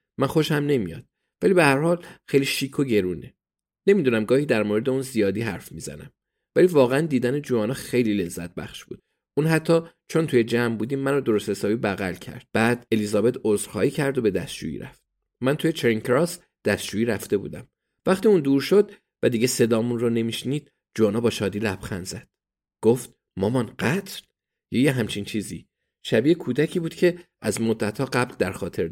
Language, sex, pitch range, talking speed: Persian, male, 105-135 Hz, 170 wpm